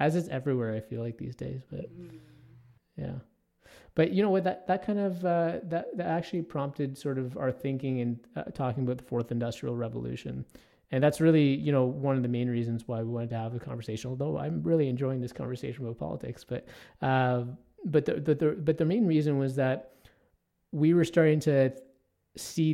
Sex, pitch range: male, 120-140 Hz